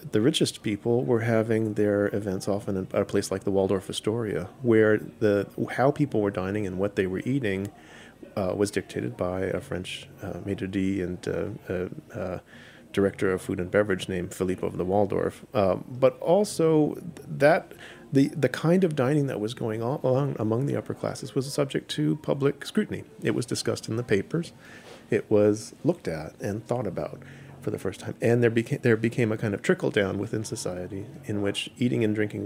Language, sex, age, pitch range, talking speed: English, male, 40-59, 100-125 Hz, 195 wpm